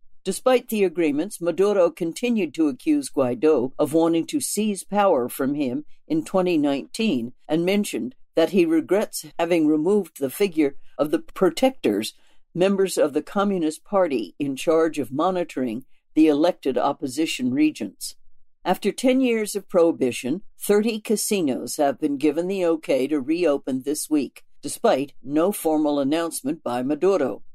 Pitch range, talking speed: 150-210 Hz, 140 wpm